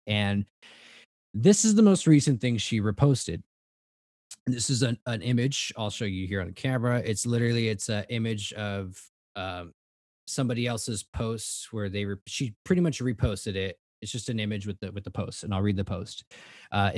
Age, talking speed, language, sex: 20-39, 195 wpm, English, male